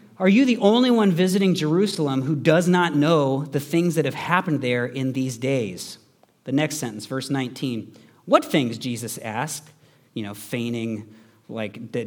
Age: 40-59